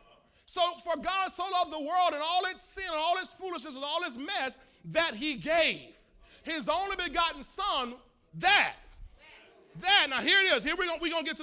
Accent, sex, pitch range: American, male, 265-375 Hz